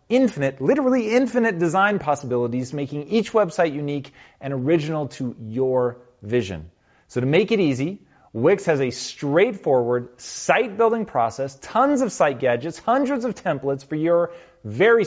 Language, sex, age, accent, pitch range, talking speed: Hindi, male, 30-49, American, 125-180 Hz, 145 wpm